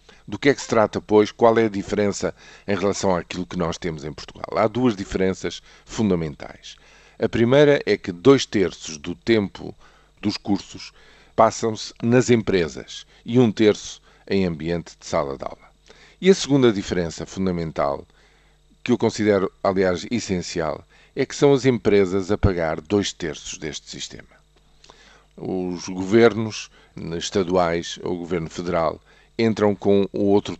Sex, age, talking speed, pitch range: male, 50-69, 150 wpm, 90-115 Hz